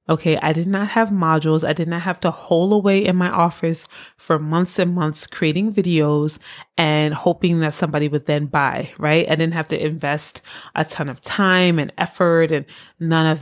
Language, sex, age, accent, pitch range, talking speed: English, female, 20-39, American, 155-190 Hz, 195 wpm